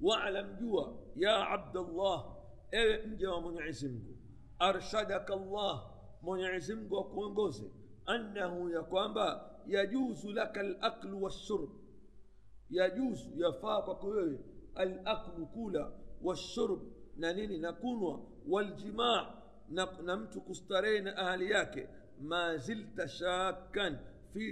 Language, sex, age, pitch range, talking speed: Swahili, male, 50-69, 170-215 Hz, 40 wpm